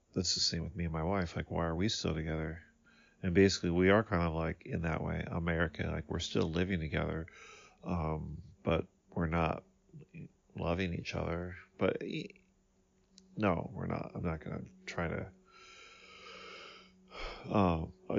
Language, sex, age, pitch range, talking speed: English, male, 40-59, 85-100 Hz, 160 wpm